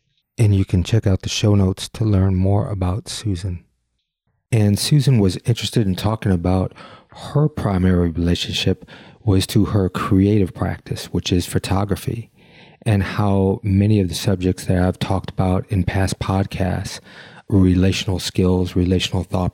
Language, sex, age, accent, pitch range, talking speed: English, male, 40-59, American, 90-110 Hz, 145 wpm